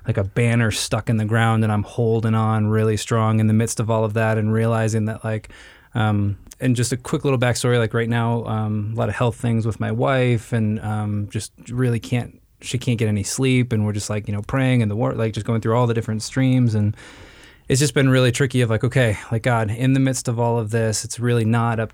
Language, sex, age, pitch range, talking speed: English, male, 20-39, 110-115 Hz, 255 wpm